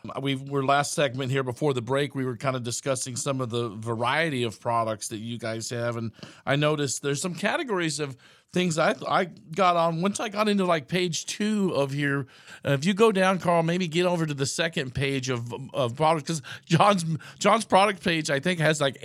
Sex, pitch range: male, 130-175 Hz